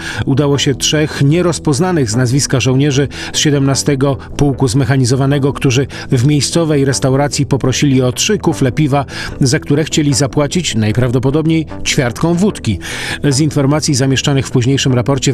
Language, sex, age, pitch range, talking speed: Polish, male, 40-59, 130-150 Hz, 130 wpm